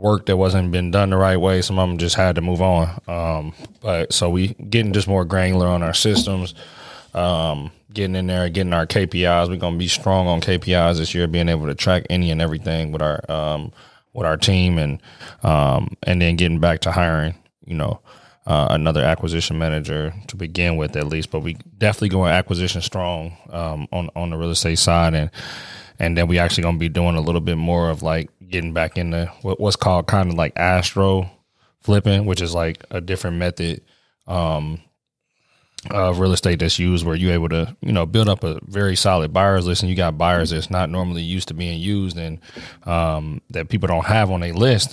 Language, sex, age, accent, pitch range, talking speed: English, male, 20-39, American, 85-95 Hz, 210 wpm